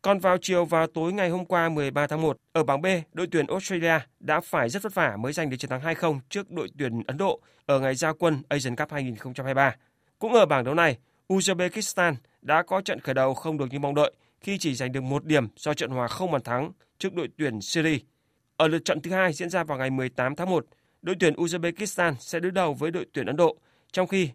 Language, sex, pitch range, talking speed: Vietnamese, male, 135-175 Hz, 240 wpm